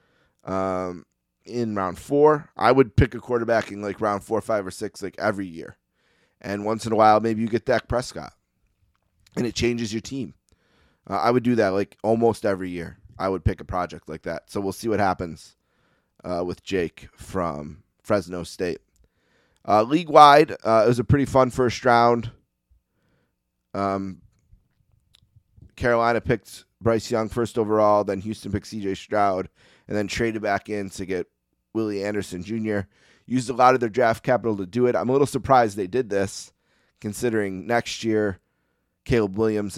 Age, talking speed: 30-49, 175 wpm